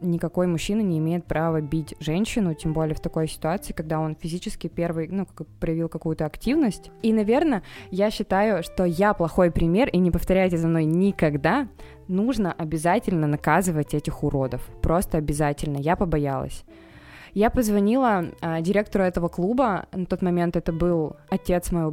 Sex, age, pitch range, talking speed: female, 20-39, 160-190 Hz, 150 wpm